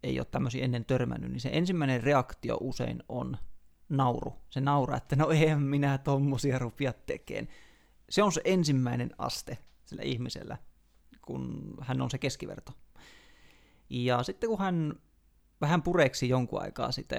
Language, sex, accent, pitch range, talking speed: Finnish, male, native, 125-150 Hz, 145 wpm